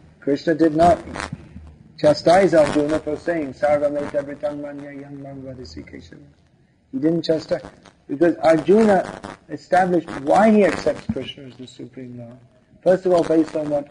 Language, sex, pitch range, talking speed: English, male, 140-165 Hz, 130 wpm